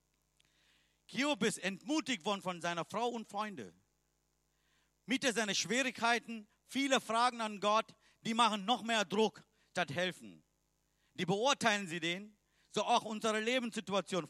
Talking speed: 130 wpm